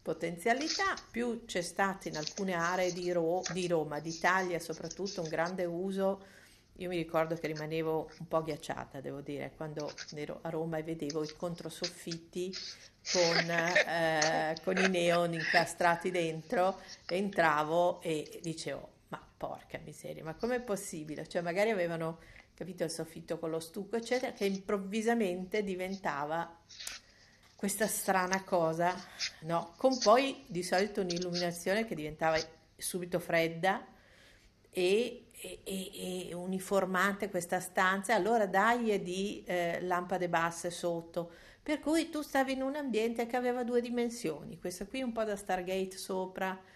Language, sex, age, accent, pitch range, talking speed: Italian, female, 50-69, native, 170-205 Hz, 135 wpm